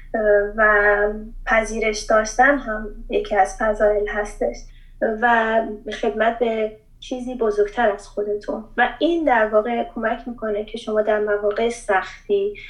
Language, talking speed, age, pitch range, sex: Persian, 125 wpm, 20-39, 205-225 Hz, female